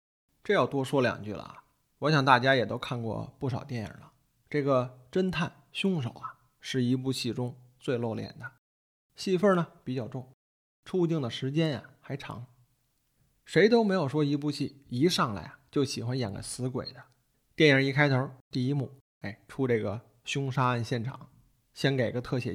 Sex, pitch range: male, 120-150 Hz